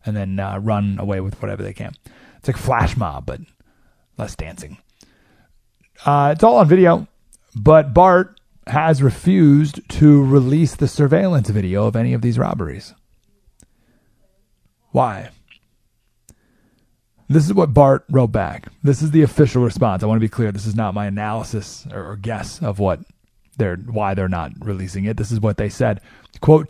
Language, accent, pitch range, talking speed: English, American, 110-145 Hz, 165 wpm